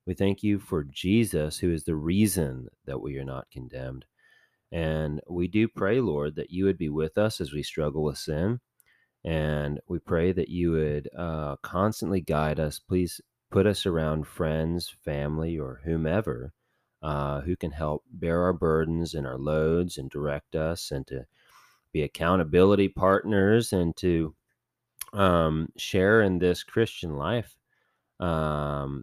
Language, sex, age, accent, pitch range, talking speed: English, male, 30-49, American, 80-95 Hz, 155 wpm